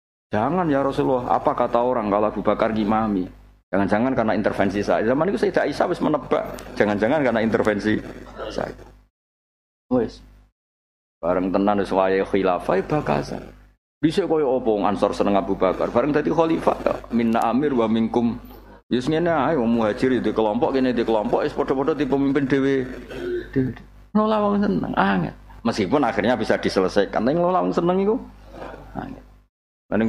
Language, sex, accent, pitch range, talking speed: Indonesian, male, native, 105-135 Hz, 140 wpm